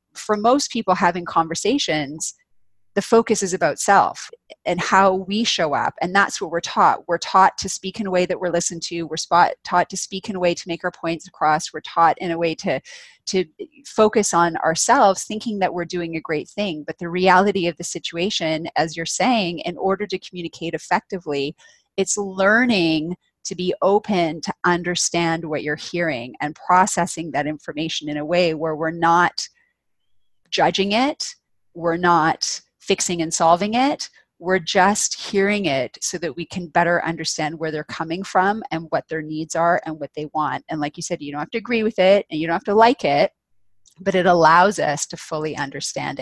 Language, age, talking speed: English, 30-49, 195 wpm